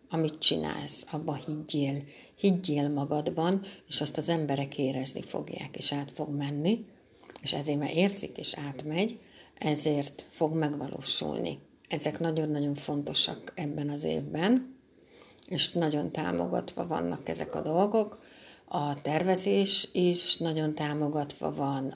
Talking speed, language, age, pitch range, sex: 120 wpm, Hungarian, 60-79, 145-180 Hz, female